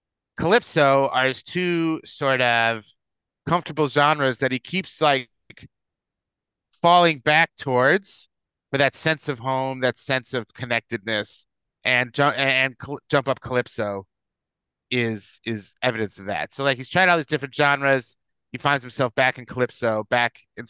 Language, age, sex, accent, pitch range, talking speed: English, 30-49, male, American, 110-140 Hz, 150 wpm